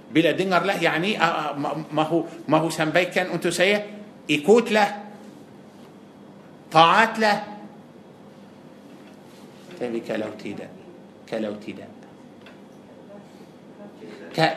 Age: 50-69